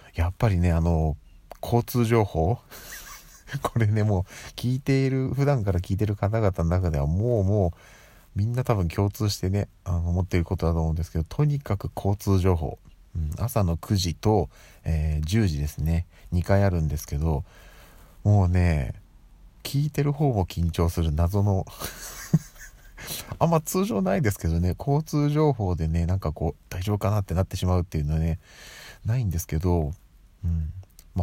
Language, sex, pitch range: Japanese, male, 80-110 Hz